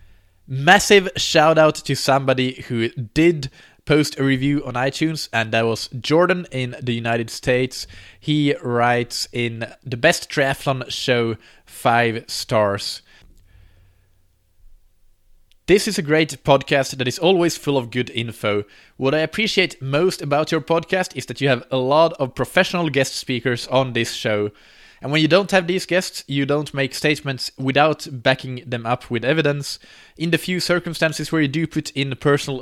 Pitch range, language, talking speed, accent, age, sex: 115-150 Hz, English, 160 wpm, Norwegian, 20-39, male